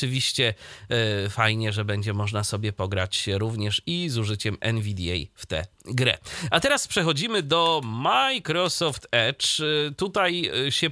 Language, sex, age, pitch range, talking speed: Polish, male, 30-49, 115-150 Hz, 125 wpm